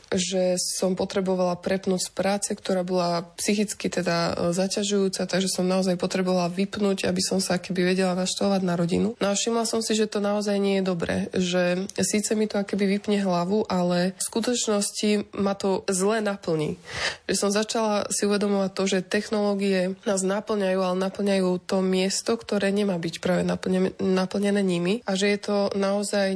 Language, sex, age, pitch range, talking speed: Slovak, female, 20-39, 185-205 Hz, 165 wpm